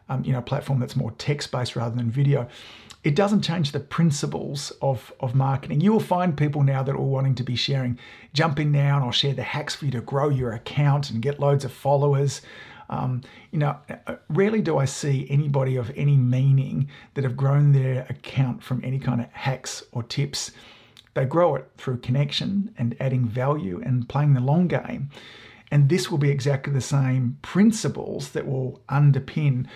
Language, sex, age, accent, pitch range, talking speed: English, male, 50-69, Australian, 125-145 Hz, 200 wpm